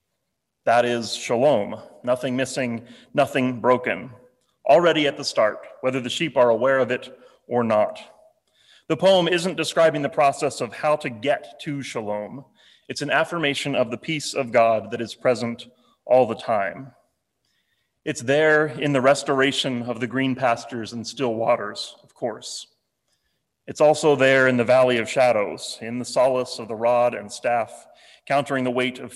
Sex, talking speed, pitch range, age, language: male, 165 wpm, 125-150 Hz, 30-49, English